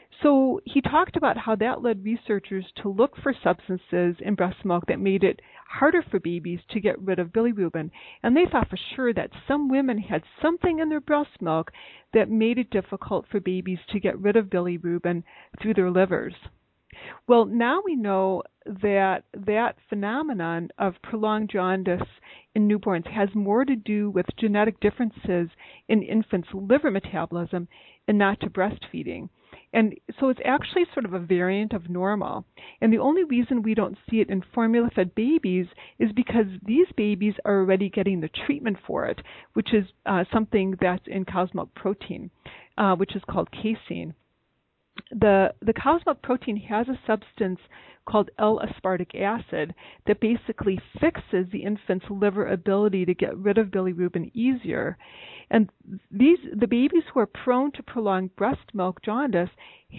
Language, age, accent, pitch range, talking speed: English, 40-59, American, 190-235 Hz, 165 wpm